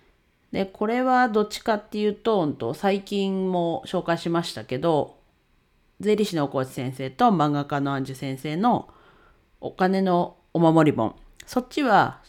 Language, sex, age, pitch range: Japanese, female, 40-59, 140-210 Hz